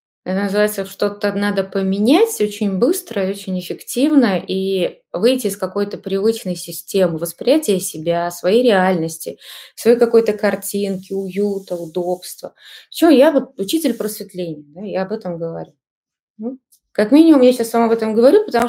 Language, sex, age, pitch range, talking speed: Russian, female, 20-39, 190-235 Hz, 135 wpm